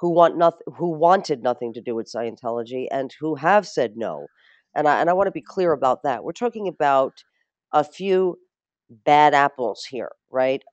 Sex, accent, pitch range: female, American, 145-195 Hz